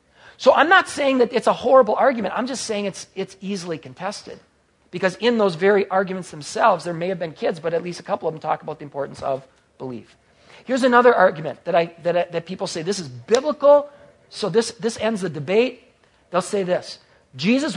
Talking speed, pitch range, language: 215 wpm, 170-225 Hz, English